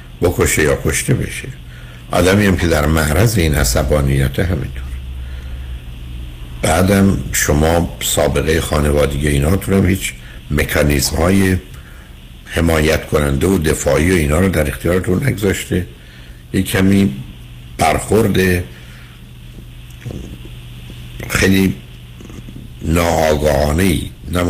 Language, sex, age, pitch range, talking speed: Persian, male, 60-79, 65-85 Hz, 85 wpm